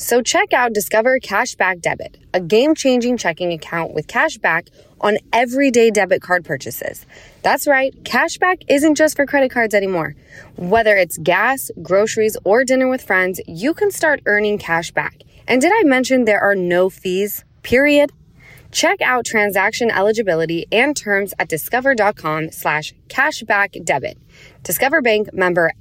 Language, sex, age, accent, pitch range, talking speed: English, female, 20-39, American, 170-235 Hz, 140 wpm